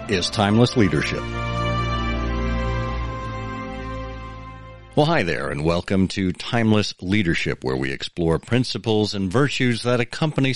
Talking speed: 110 wpm